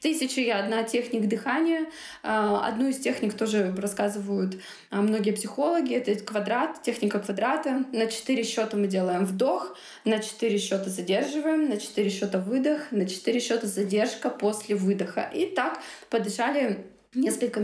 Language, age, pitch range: Russian, 20-39, 205-250 Hz